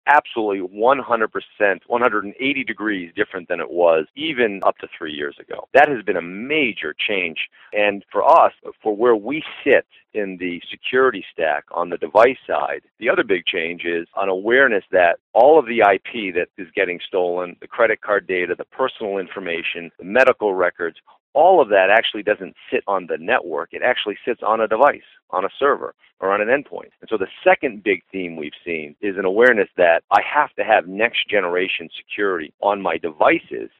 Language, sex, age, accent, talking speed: English, male, 50-69, American, 185 wpm